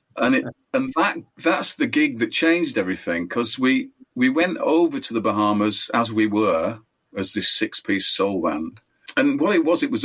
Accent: British